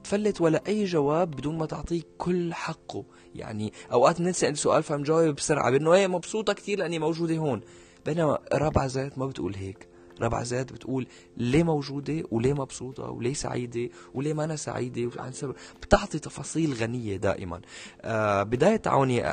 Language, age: English, 20-39